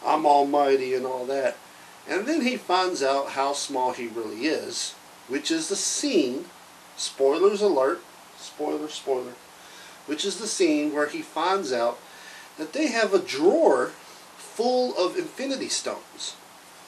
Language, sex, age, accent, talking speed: English, male, 40-59, American, 140 wpm